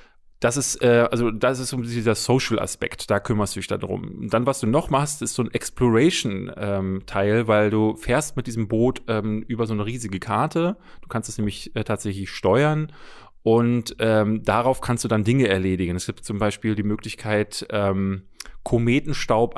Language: German